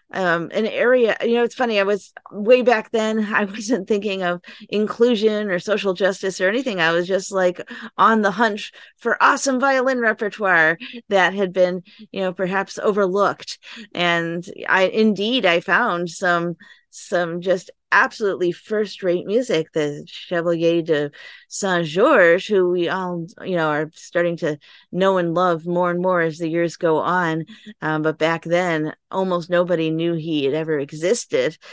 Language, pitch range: English, 155-190 Hz